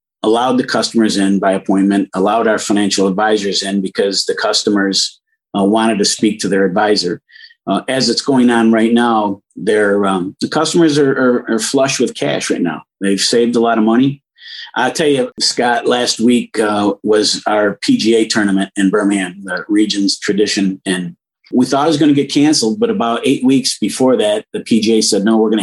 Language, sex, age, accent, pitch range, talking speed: English, male, 50-69, American, 105-140 Hz, 195 wpm